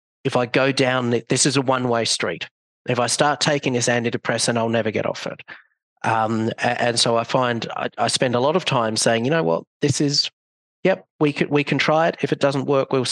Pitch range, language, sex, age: 115-140 Hz, English, male, 40-59